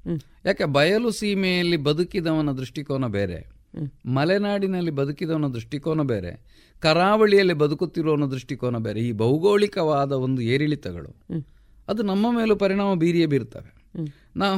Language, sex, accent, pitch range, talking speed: Kannada, male, native, 140-200 Hz, 105 wpm